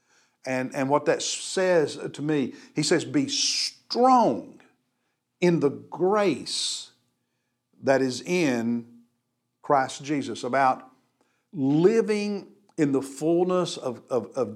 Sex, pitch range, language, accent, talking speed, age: male, 125-155 Hz, English, American, 110 wpm, 50-69